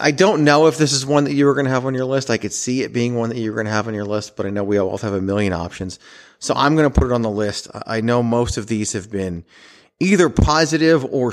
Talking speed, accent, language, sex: 310 wpm, American, English, male